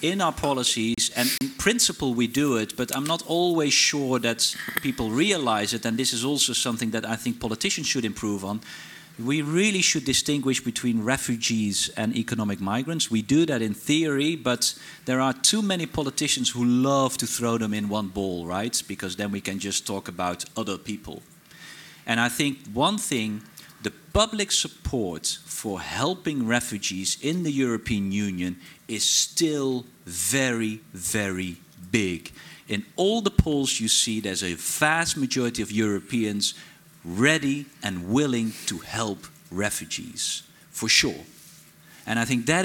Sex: male